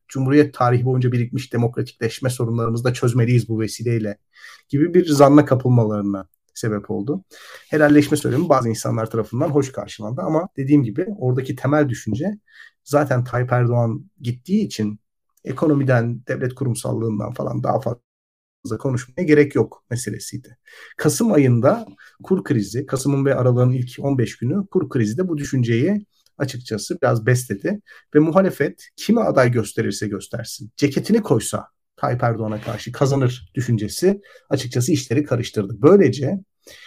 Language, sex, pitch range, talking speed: Turkish, male, 115-150 Hz, 130 wpm